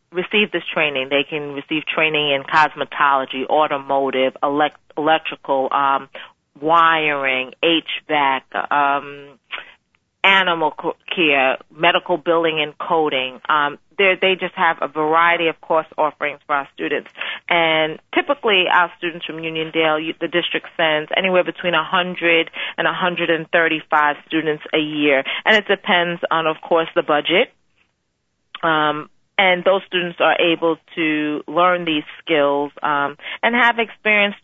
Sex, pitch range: female, 150-180 Hz